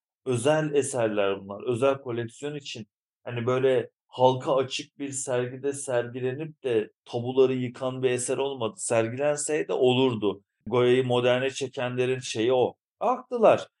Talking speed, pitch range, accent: 115 wpm, 105-135 Hz, native